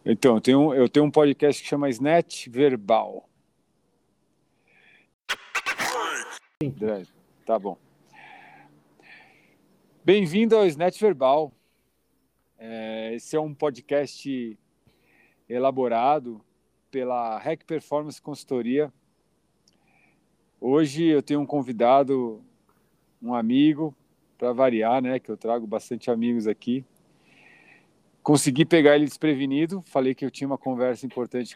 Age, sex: 40-59, male